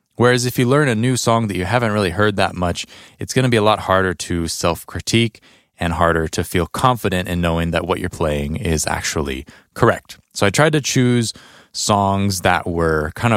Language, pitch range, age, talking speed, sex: English, 85-115 Hz, 20-39, 205 wpm, male